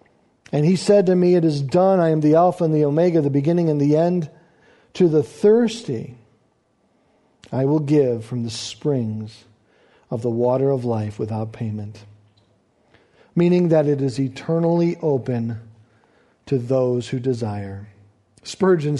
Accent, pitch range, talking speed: American, 135-195 Hz, 150 wpm